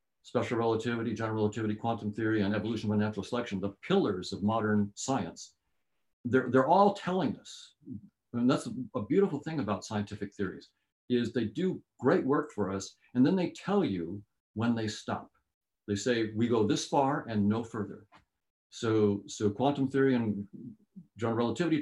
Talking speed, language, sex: 165 wpm, English, male